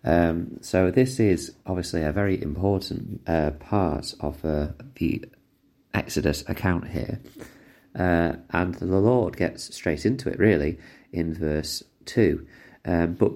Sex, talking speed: male, 130 wpm